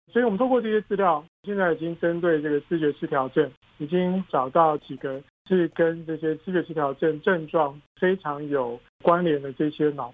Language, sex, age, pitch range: Chinese, male, 50-69, 145-175 Hz